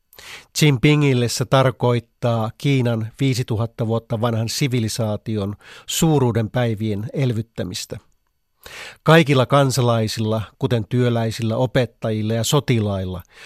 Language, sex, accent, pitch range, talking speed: Finnish, male, native, 110-130 Hz, 70 wpm